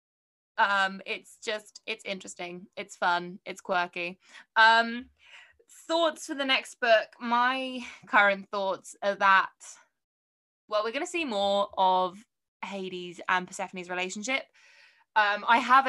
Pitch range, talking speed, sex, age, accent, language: 195-255 Hz, 130 wpm, female, 20-39, British, English